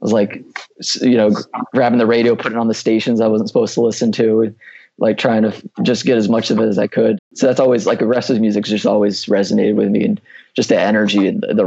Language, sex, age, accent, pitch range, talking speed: English, male, 20-39, American, 105-120 Hz, 265 wpm